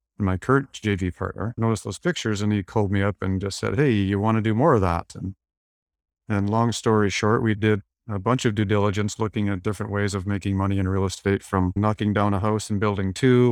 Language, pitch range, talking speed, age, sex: English, 95-110 Hz, 235 wpm, 40-59, male